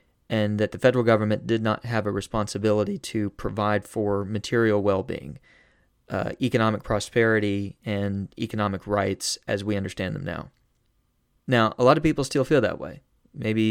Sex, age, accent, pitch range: male, 20-39, American, 100-120 Hz